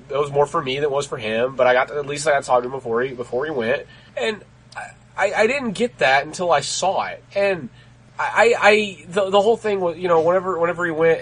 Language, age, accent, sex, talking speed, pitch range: English, 30-49, American, male, 280 wpm, 125-180 Hz